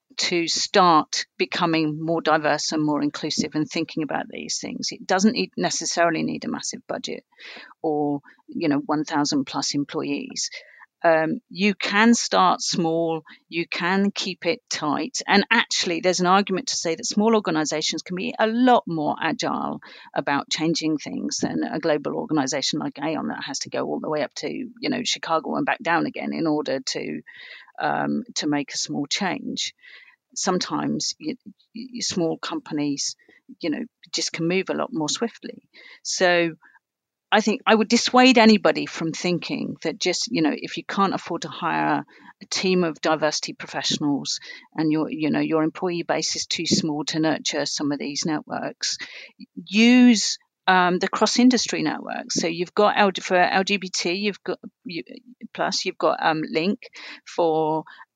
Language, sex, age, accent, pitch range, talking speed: English, female, 40-59, British, 155-215 Hz, 165 wpm